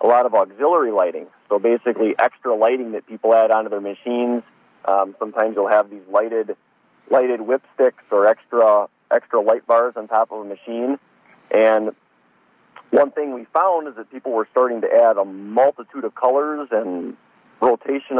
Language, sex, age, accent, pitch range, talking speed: English, male, 40-59, American, 105-125 Hz, 170 wpm